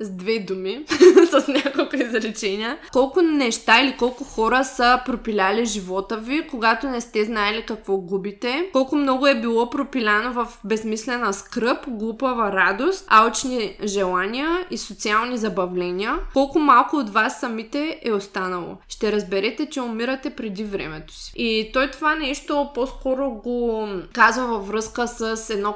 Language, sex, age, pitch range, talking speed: Bulgarian, female, 20-39, 210-260 Hz, 140 wpm